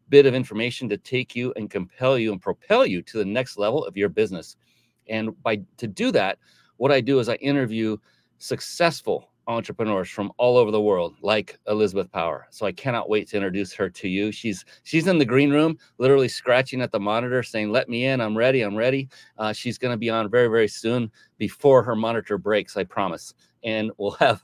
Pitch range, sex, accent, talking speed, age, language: 105-130 Hz, male, American, 210 wpm, 30-49, English